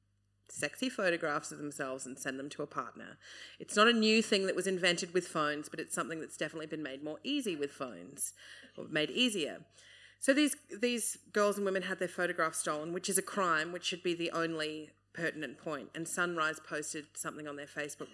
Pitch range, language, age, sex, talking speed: 150-185 Hz, English, 30-49, female, 205 wpm